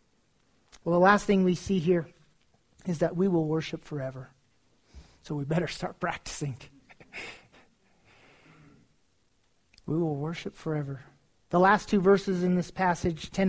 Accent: American